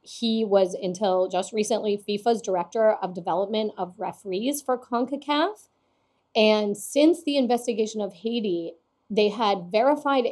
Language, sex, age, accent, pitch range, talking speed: English, female, 30-49, American, 185-235 Hz, 130 wpm